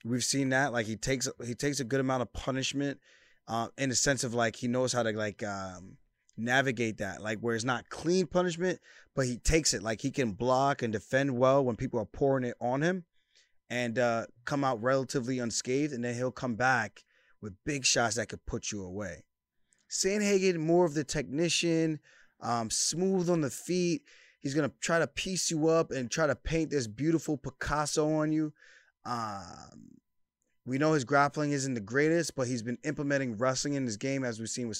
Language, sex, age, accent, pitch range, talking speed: English, male, 20-39, American, 120-155 Hz, 200 wpm